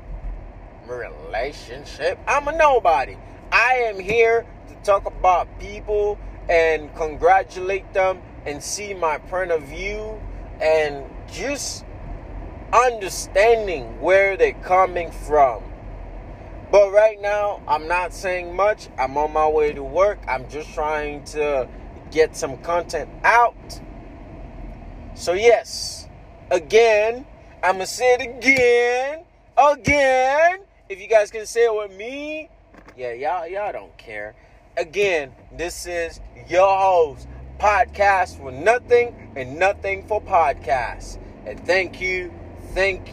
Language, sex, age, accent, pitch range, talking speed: English, male, 30-49, American, 135-225 Hz, 120 wpm